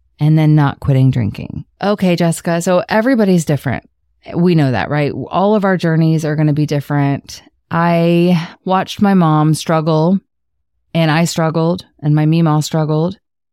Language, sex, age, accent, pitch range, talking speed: English, female, 30-49, American, 145-175 Hz, 155 wpm